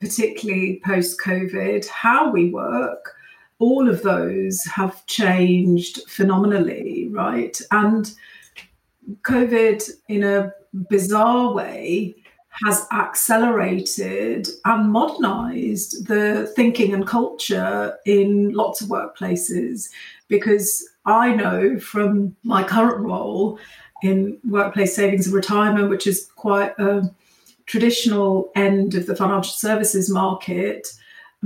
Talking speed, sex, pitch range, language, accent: 105 wpm, female, 195-230 Hz, English, British